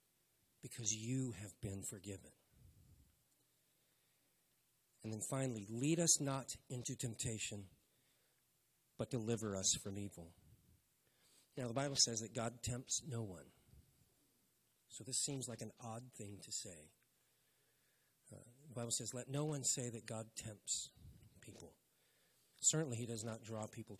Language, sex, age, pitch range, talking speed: English, male, 40-59, 110-140 Hz, 135 wpm